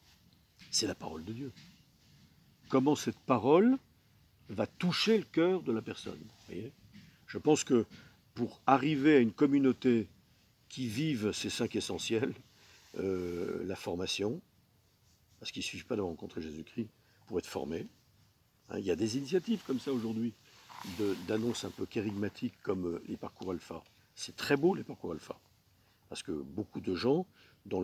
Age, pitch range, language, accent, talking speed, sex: 60-79, 105-145 Hz, French, French, 155 wpm, male